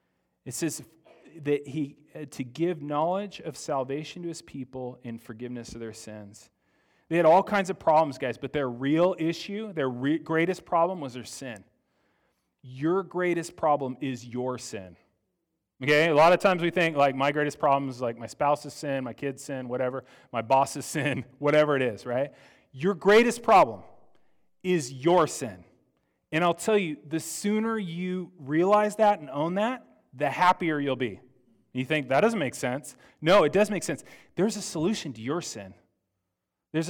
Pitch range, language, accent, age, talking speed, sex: 130-175 Hz, English, American, 30-49, 175 wpm, male